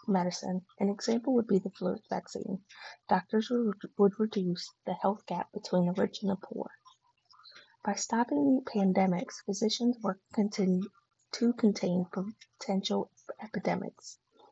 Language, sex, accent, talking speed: English, female, American, 125 wpm